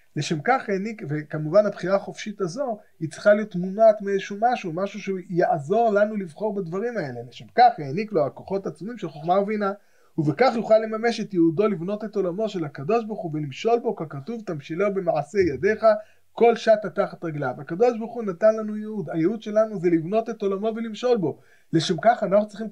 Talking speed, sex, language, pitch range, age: 180 wpm, male, Hebrew, 170-220 Hz, 20-39